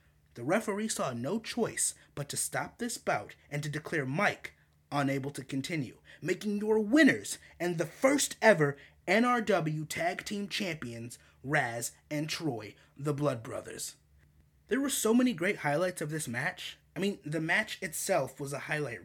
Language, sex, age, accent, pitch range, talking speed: English, male, 30-49, American, 130-205 Hz, 160 wpm